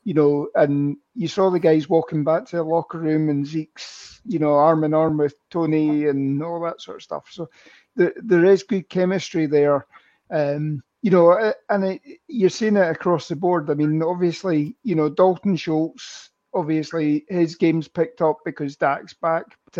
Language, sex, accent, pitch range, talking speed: English, male, British, 150-175 Hz, 190 wpm